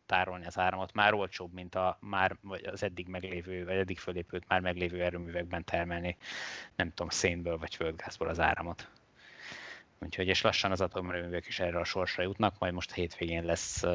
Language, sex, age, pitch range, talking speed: Hungarian, male, 20-39, 85-95 Hz, 175 wpm